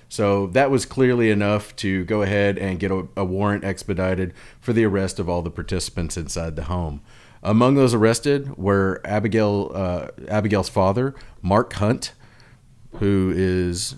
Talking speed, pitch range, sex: 155 wpm, 95-125 Hz, male